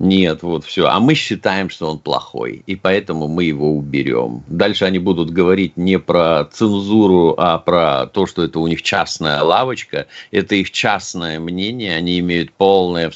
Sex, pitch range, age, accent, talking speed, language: male, 80-110 Hz, 50-69, native, 175 wpm, Russian